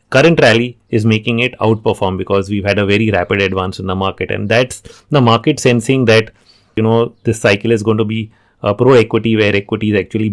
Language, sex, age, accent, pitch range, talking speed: English, male, 30-49, Indian, 100-115 Hz, 210 wpm